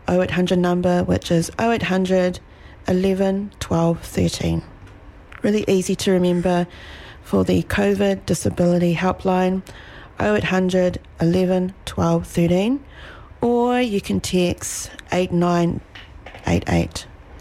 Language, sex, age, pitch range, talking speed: English, female, 40-59, 145-190 Hz, 90 wpm